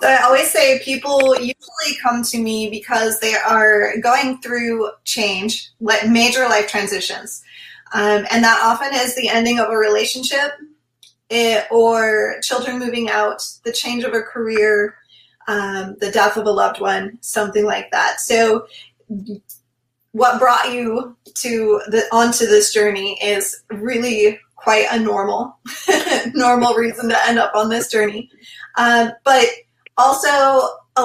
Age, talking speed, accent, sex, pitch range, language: 20-39, 145 wpm, American, female, 210-250 Hz, English